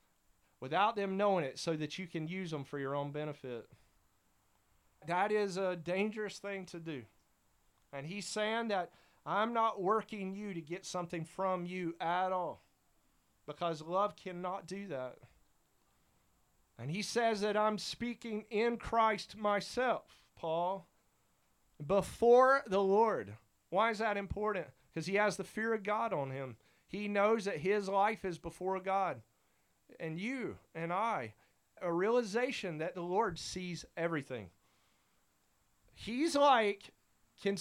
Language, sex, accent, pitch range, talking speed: English, male, American, 170-215 Hz, 140 wpm